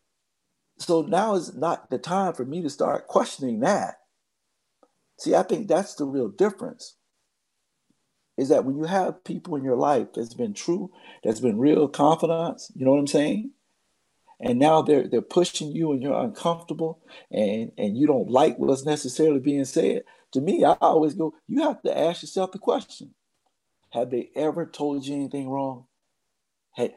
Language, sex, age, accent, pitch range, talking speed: English, male, 50-69, American, 140-205 Hz, 175 wpm